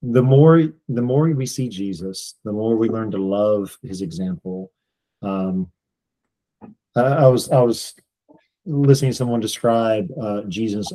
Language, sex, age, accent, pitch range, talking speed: English, male, 40-59, American, 100-125 Hz, 140 wpm